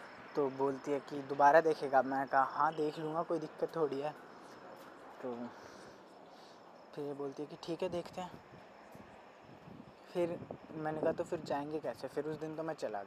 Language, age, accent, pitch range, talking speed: Hindi, 20-39, native, 140-155 Hz, 175 wpm